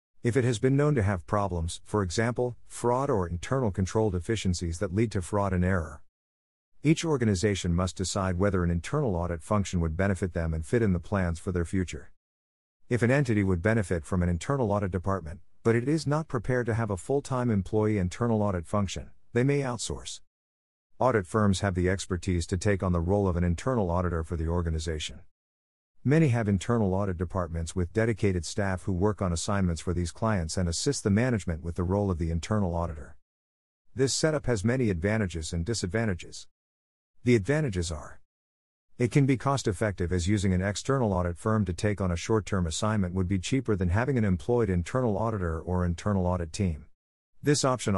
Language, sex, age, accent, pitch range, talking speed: English, male, 50-69, American, 85-110 Hz, 190 wpm